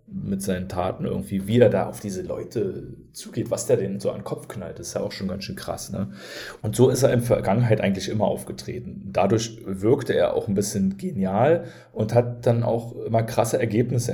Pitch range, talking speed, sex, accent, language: 100-120 Hz, 210 wpm, male, German, German